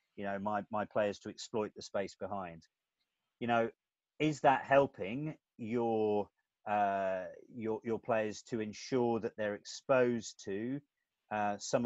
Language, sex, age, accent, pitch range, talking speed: English, male, 40-59, British, 105-120 Hz, 140 wpm